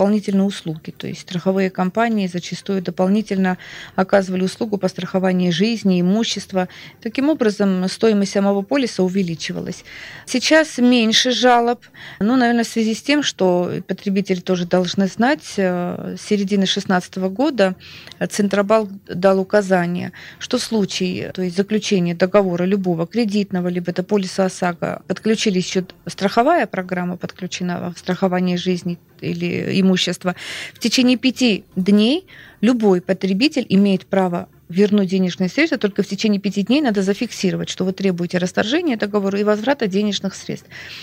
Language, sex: Russian, female